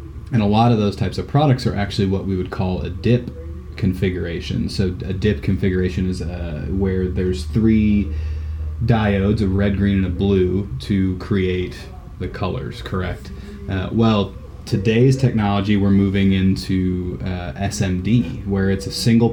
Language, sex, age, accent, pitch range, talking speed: English, male, 20-39, American, 90-100 Hz, 155 wpm